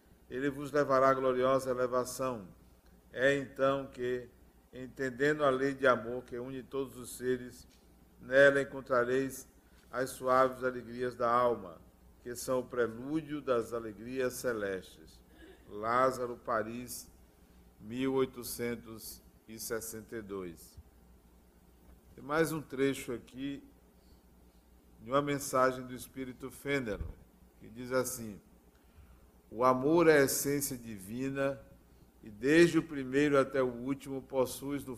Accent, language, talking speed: Brazilian, Portuguese, 110 wpm